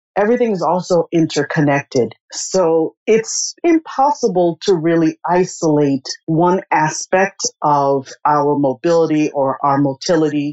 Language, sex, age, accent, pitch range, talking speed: English, female, 40-59, American, 145-190 Hz, 105 wpm